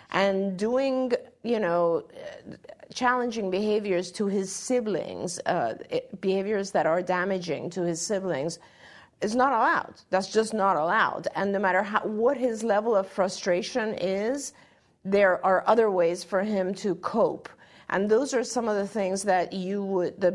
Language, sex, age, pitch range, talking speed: English, female, 50-69, 180-220 Hz, 155 wpm